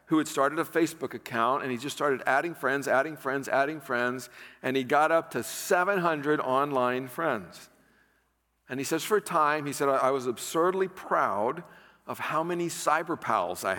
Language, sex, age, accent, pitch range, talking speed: English, male, 50-69, American, 140-200 Hz, 185 wpm